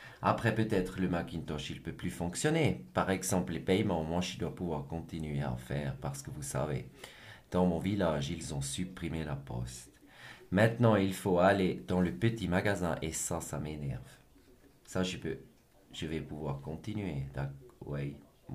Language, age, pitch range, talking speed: French, 40-59, 75-100 Hz, 170 wpm